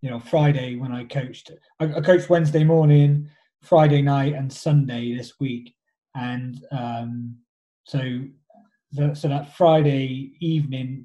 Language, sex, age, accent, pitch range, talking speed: English, male, 20-39, British, 135-165 Hz, 130 wpm